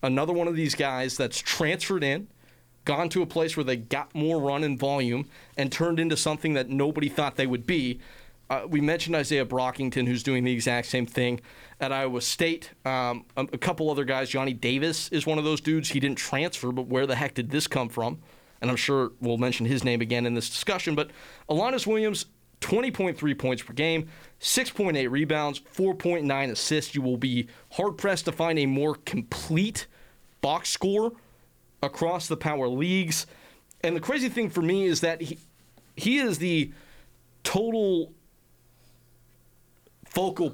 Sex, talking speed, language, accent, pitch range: male, 175 wpm, English, American, 130-165 Hz